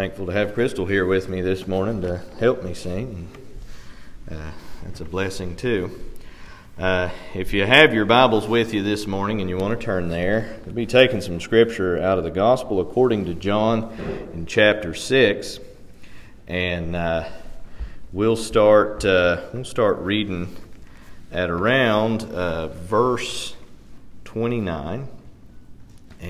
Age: 40-59